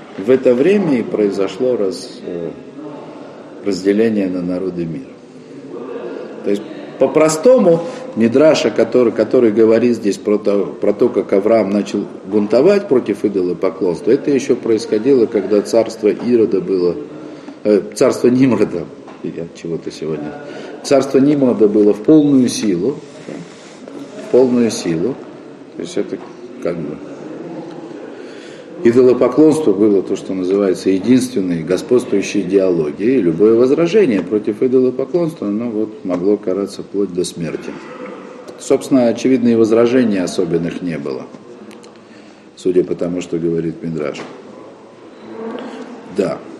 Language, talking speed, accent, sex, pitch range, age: Russian, 110 wpm, native, male, 95-130 Hz, 50-69